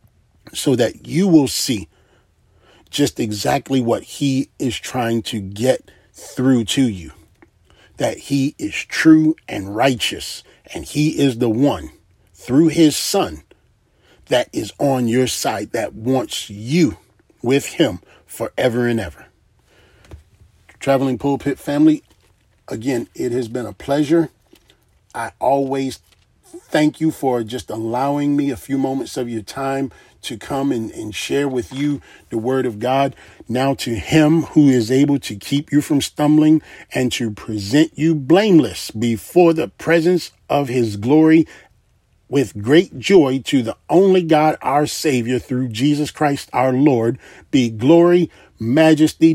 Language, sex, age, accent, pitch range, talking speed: English, male, 40-59, American, 115-150 Hz, 145 wpm